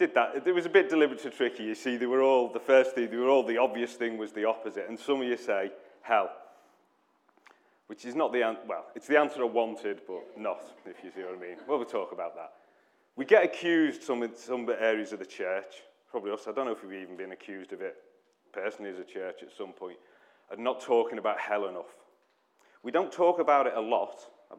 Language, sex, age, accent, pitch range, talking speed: English, male, 30-49, British, 110-130 Hz, 240 wpm